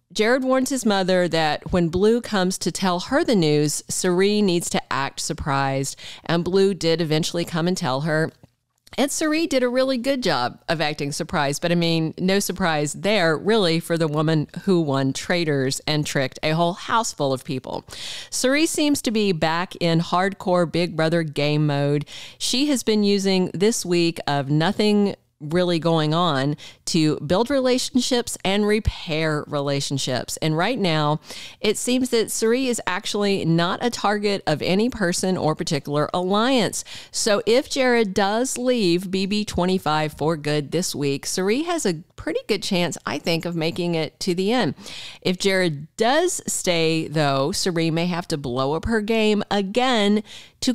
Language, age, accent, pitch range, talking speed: English, 40-59, American, 155-215 Hz, 170 wpm